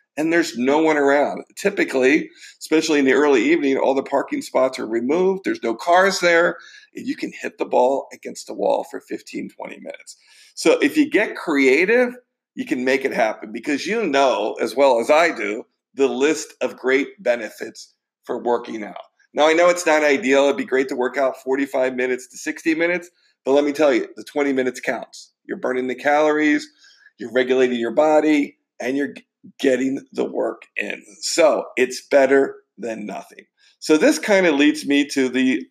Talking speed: 190 wpm